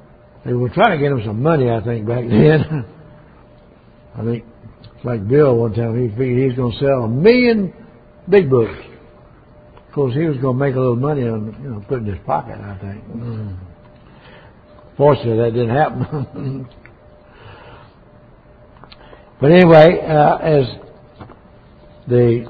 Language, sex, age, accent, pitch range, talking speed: English, male, 60-79, American, 115-145 Hz, 150 wpm